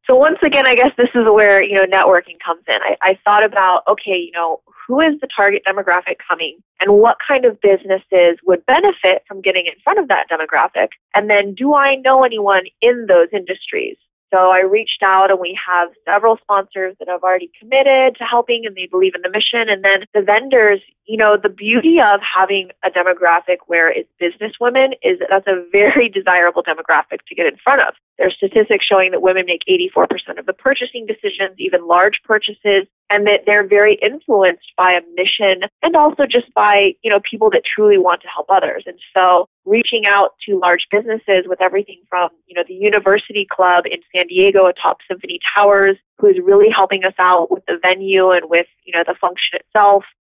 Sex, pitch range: female, 185-220 Hz